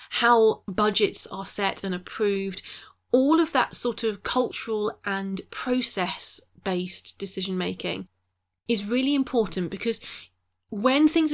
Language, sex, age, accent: English, female, 30-49, British